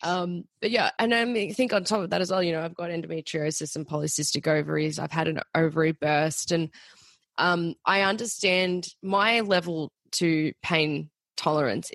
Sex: female